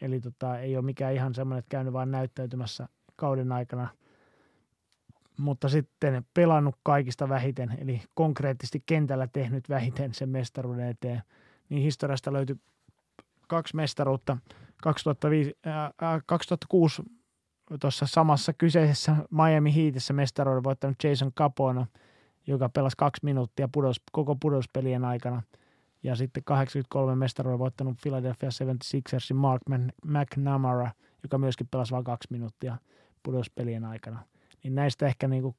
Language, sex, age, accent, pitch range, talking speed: Finnish, male, 30-49, native, 125-140 Hz, 125 wpm